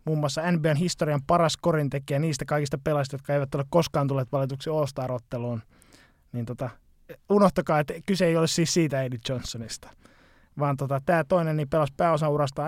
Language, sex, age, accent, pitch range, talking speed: Finnish, male, 20-39, native, 135-155 Hz, 165 wpm